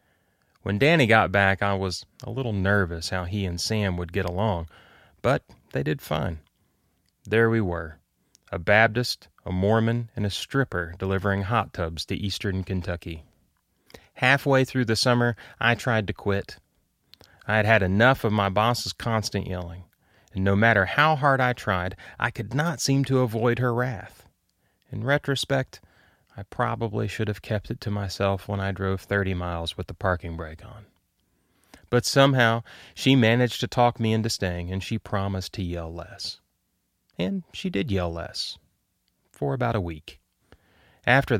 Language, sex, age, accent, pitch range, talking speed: English, male, 30-49, American, 90-120 Hz, 165 wpm